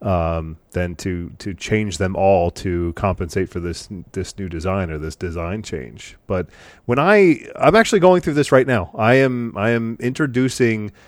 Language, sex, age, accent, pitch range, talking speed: English, male, 30-49, American, 90-110 Hz, 185 wpm